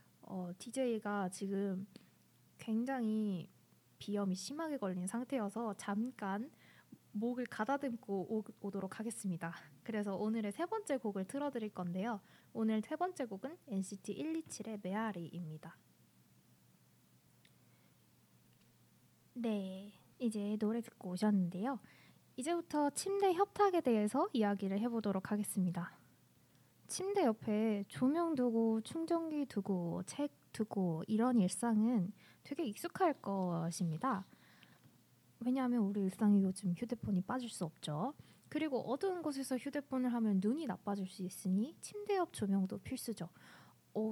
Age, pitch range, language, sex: 20-39, 195-255 Hz, Korean, female